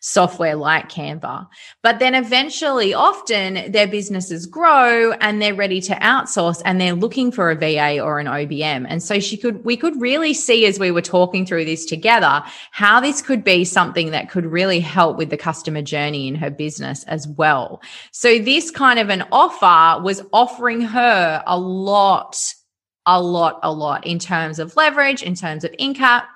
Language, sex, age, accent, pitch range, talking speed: English, female, 20-39, Australian, 165-240 Hz, 180 wpm